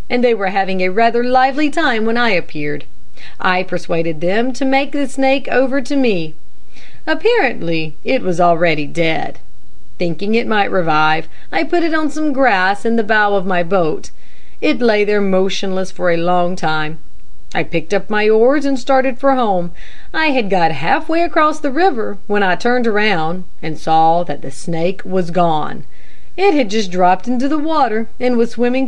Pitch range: 165-245 Hz